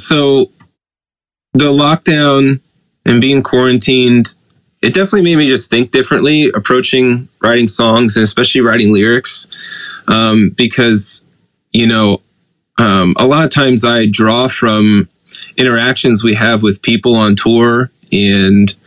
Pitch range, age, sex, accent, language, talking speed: 105-130 Hz, 20-39, male, American, English, 125 wpm